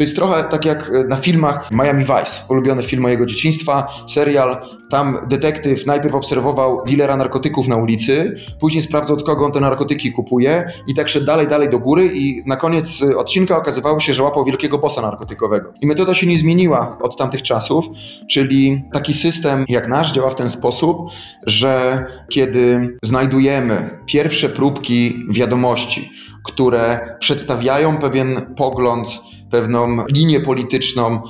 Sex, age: male, 30-49